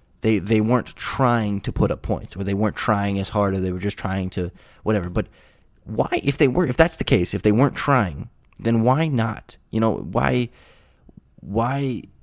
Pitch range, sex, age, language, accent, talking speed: 100-115 Hz, male, 20-39, English, American, 195 wpm